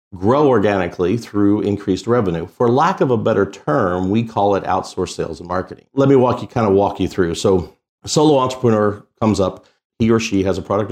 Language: English